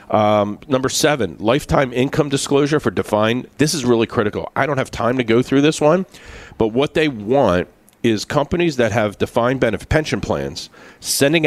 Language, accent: English, American